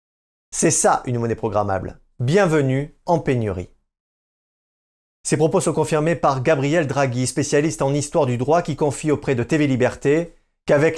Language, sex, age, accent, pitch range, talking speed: French, male, 40-59, French, 120-190 Hz, 150 wpm